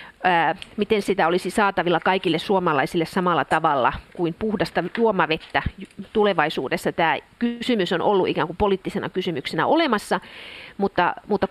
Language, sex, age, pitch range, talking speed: Finnish, female, 40-59, 170-215 Hz, 120 wpm